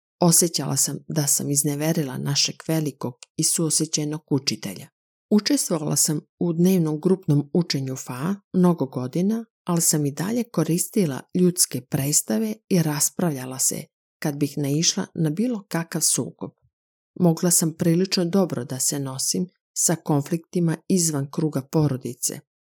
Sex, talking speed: female, 125 wpm